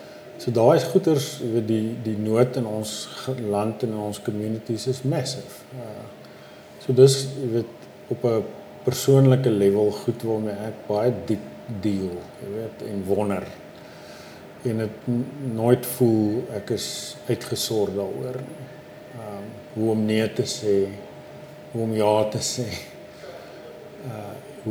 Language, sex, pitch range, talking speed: English, male, 105-125 Hz, 130 wpm